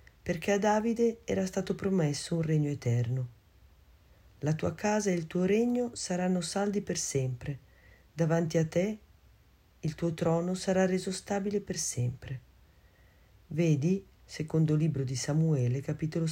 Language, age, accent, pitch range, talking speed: Italian, 40-59, native, 125-185 Hz, 135 wpm